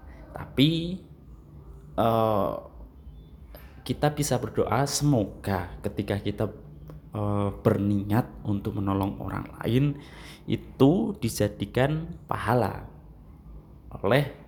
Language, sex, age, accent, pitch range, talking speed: Indonesian, male, 20-39, native, 95-120 Hz, 75 wpm